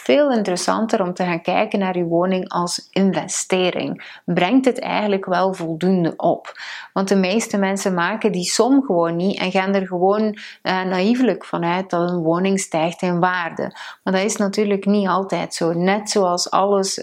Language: Dutch